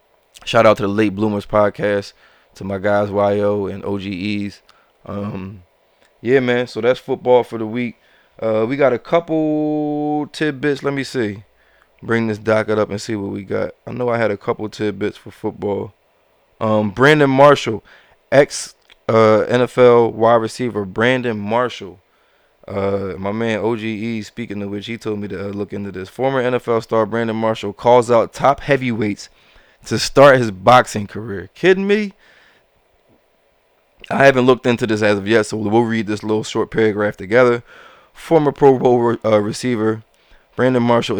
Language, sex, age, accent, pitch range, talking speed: English, male, 20-39, American, 105-125 Hz, 165 wpm